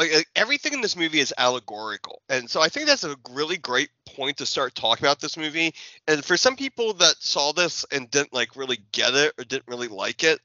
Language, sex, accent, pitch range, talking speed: English, male, American, 120-150 Hz, 225 wpm